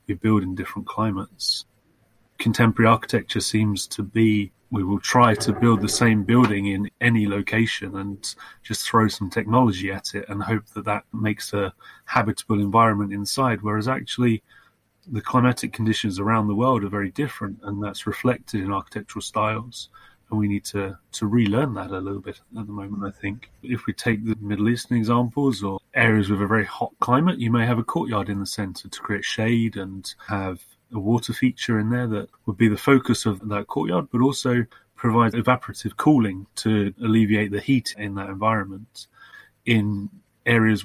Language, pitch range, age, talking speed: English, 100-115 Hz, 30-49, 180 wpm